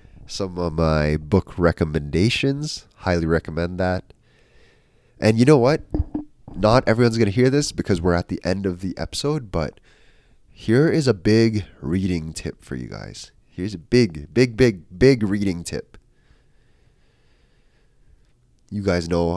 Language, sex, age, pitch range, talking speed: English, male, 20-39, 85-115 Hz, 145 wpm